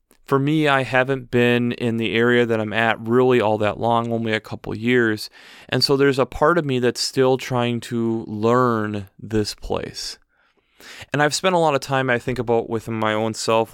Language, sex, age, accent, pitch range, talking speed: English, male, 20-39, American, 110-130 Hz, 205 wpm